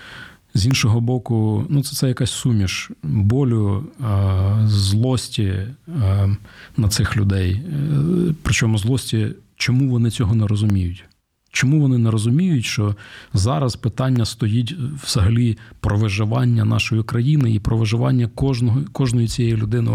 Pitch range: 100-125 Hz